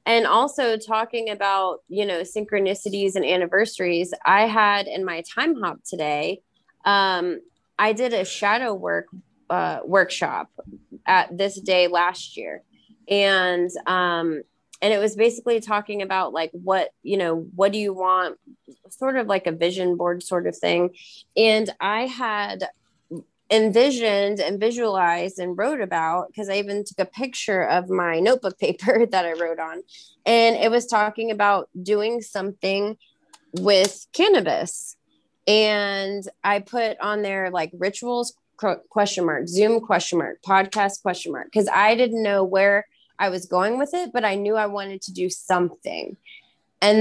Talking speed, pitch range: 155 wpm, 185-220 Hz